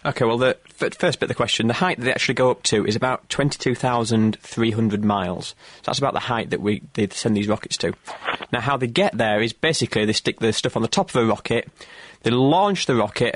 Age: 20-39